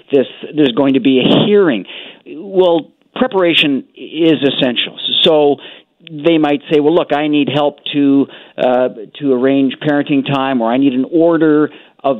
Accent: American